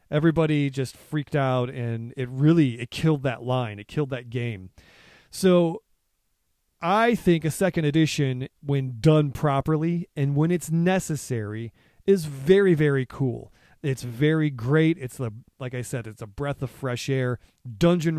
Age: 30-49